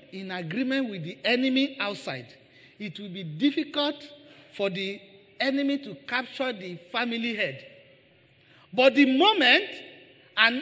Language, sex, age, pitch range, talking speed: English, male, 40-59, 150-250 Hz, 125 wpm